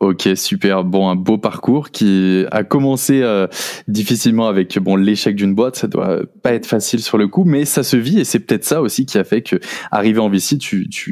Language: French